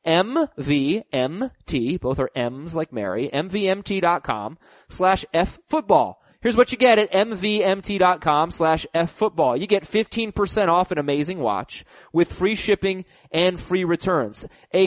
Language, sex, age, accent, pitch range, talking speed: English, male, 30-49, American, 165-225 Hz, 140 wpm